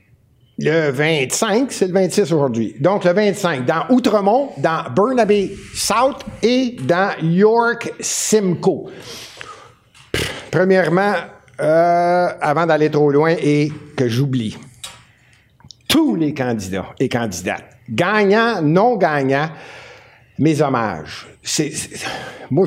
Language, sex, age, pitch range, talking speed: French, male, 60-79, 140-190 Hz, 110 wpm